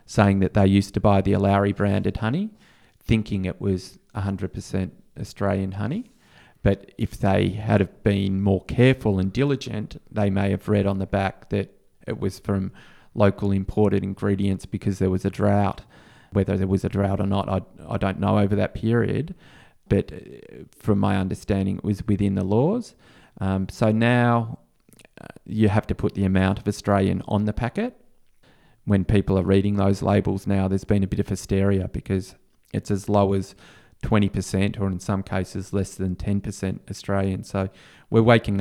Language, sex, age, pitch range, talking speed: English, male, 30-49, 95-110 Hz, 170 wpm